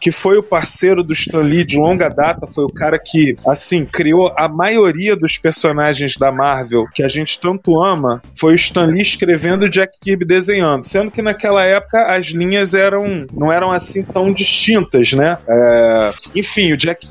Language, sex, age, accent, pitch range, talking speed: Portuguese, male, 20-39, Brazilian, 150-210 Hz, 190 wpm